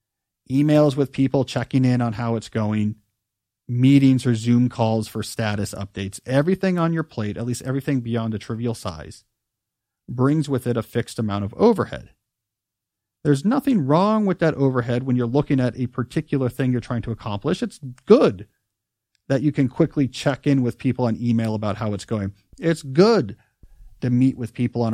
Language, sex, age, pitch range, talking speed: English, male, 40-59, 110-150 Hz, 180 wpm